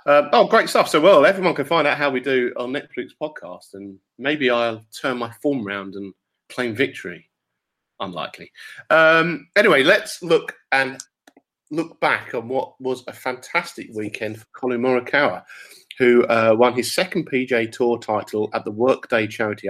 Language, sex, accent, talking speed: English, male, British, 170 wpm